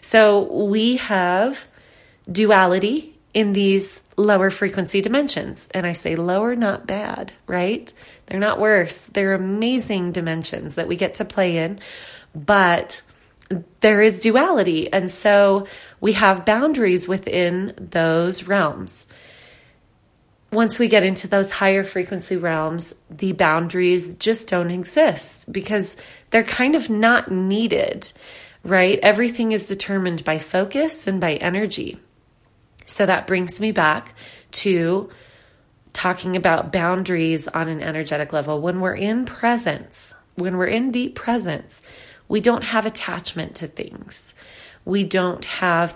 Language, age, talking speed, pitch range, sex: English, 30-49, 130 wpm, 180-220 Hz, female